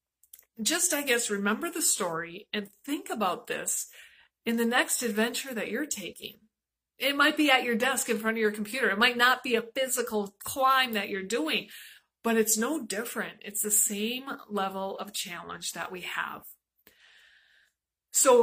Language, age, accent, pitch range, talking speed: English, 30-49, American, 205-275 Hz, 170 wpm